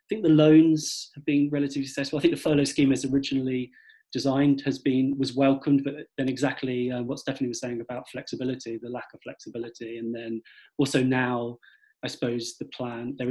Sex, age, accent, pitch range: male, 20-39, British, 125-145 Hz